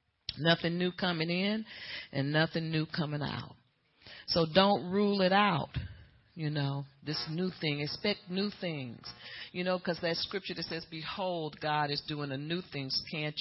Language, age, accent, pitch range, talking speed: English, 40-59, American, 155-190 Hz, 165 wpm